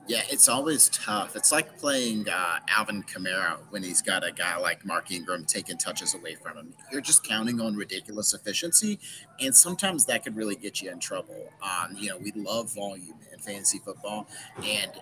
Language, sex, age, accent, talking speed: English, male, 30-49, American, 190 wpm